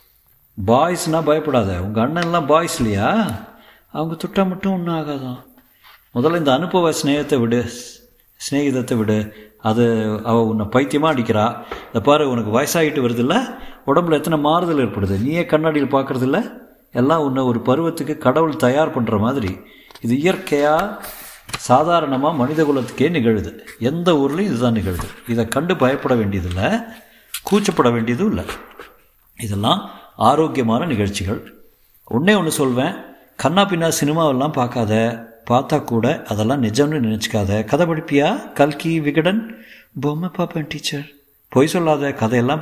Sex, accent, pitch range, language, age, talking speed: male, native, 120-160 Hz, Tamil, 50-69, 120 wpm